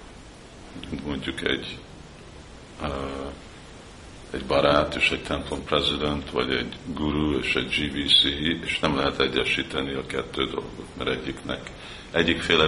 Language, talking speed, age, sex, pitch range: Hungarian, 120 wpm, 50-69, male, 70-80 Hz